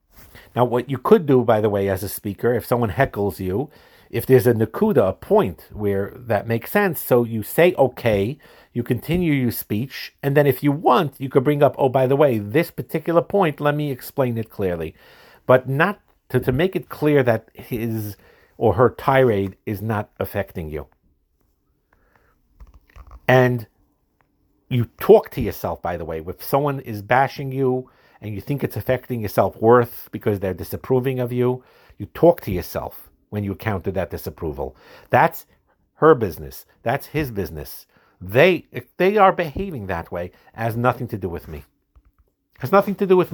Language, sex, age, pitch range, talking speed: English, male, 50-69, 100-135 Hz, 175 wpm